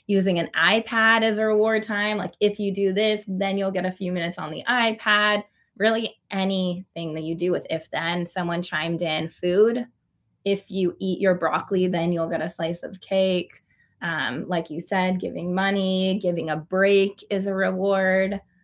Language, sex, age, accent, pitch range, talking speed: English, female, 20-39, American, 170-195 Hz, 185 wpm